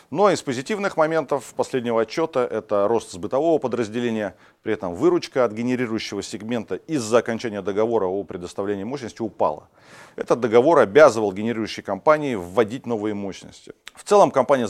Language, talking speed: Russian, 140 wpm